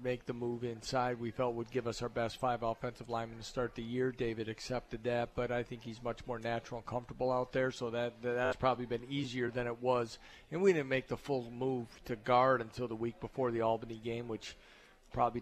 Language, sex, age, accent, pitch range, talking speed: English, male, 50-69, American, 120-130 Hz, 230 wpm